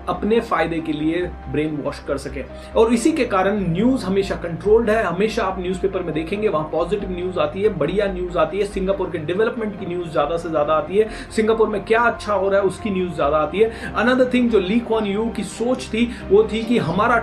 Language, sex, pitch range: Hindi, male, 175-220 Hz